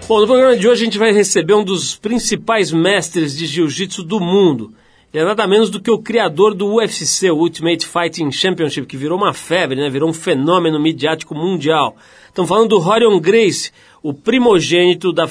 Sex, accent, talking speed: male, Brazilian, 190 wpm